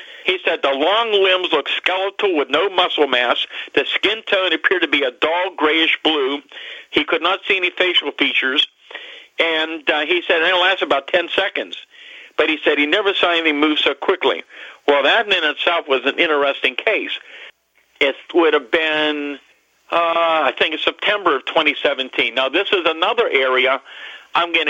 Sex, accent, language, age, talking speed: male, American, English, 50-69, 175 wpm